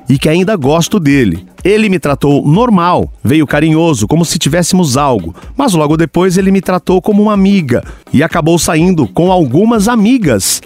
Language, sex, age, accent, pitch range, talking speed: Portuguese, male, 40-59, Brazilian, 150-200 Hz, 170 wpm